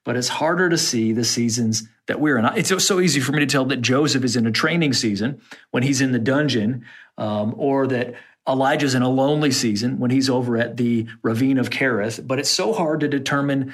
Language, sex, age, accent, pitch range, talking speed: English, male, 40-59, American, 120-145 Hz, 225 wpm